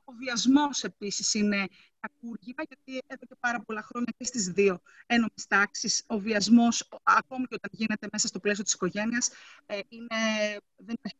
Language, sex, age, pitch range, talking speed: Greek, female, 30-49, 215-280 Hz, 165 wpm